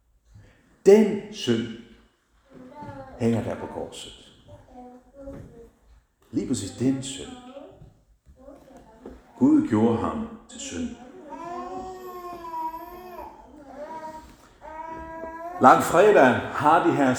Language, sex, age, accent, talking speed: Danish, male, 60-79, native, 65 wpm